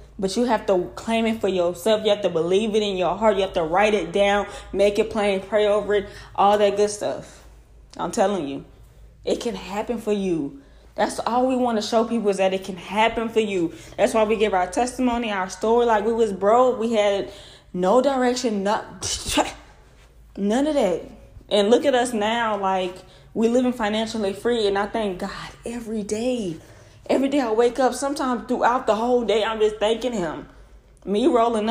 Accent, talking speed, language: American, 200 wpm, English